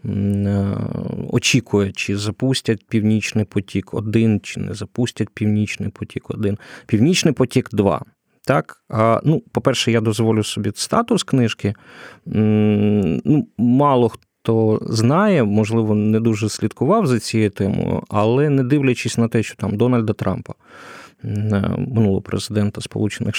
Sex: male